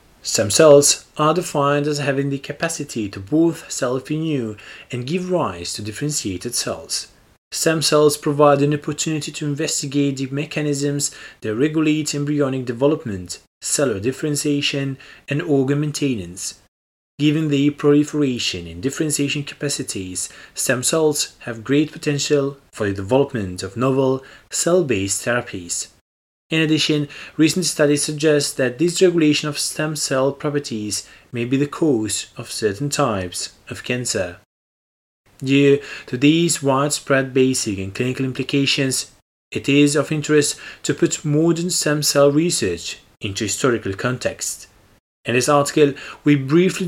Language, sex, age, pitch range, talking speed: English, male, 30-49, 125-150 Hz, 125 wpm